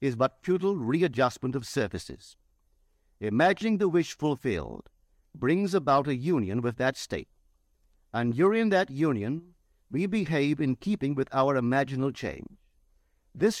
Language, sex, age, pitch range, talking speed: English, male, 50-69, 100-165 Hz, 130 wpm